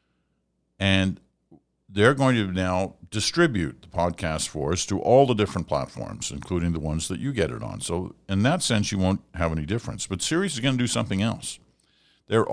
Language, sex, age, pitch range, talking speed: English, male, 50-69, 75-105 Hz, 195 wpm